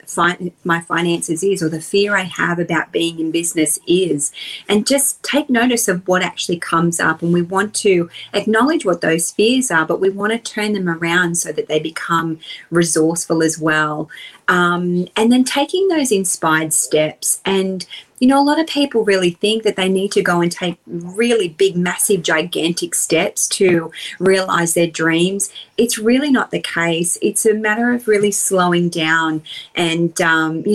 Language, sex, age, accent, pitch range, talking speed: English, female, 30-49, Australian, 165-210 Hz, 180 wpm